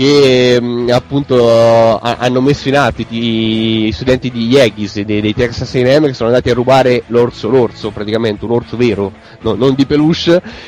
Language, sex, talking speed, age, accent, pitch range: Italian, male, 155 wpm, 20-39, native, 115-145 Hz